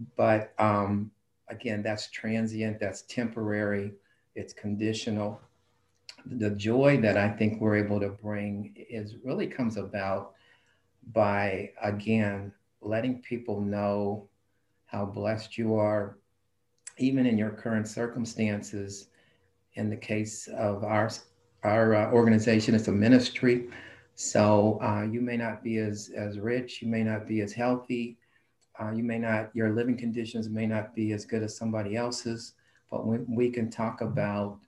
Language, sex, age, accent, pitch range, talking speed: English, male, 50-69, American, 100-115 Hz, 140 wpm